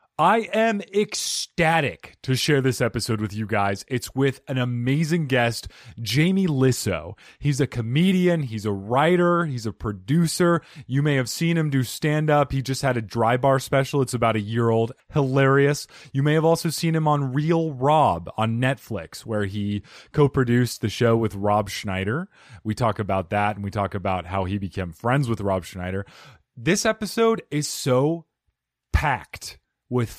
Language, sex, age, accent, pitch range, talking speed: English, male, 30-49, American, 110-155 Hz, 175 wpm